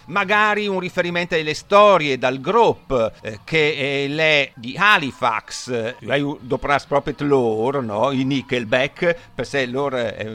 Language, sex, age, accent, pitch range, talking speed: Italian, male, 50-69, native, 130-175 Hz, 120 wpm